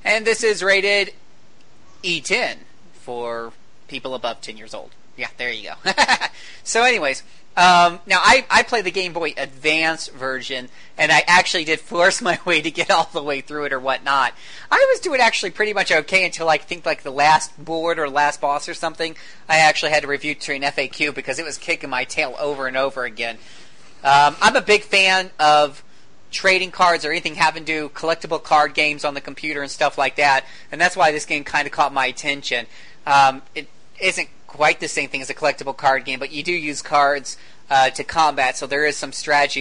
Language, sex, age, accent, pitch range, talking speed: English, male, 40-59, American, 135-165 Hz, 210 wpm